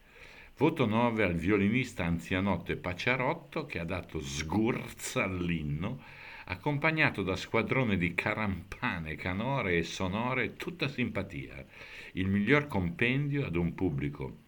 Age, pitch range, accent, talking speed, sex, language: 60-79, 75-105 Hz, native, 115 wpm, male, Italian